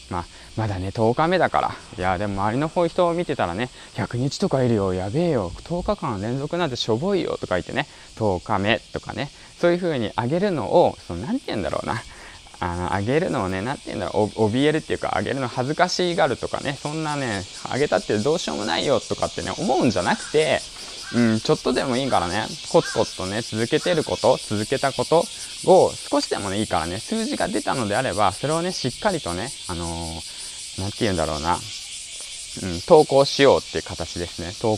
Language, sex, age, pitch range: Japanese, male, 20-39, 95-130 Hz